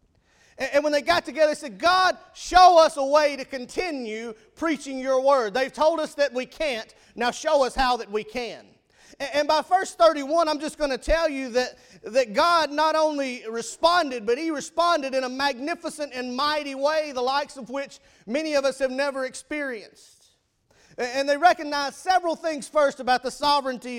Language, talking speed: English, 185 wpm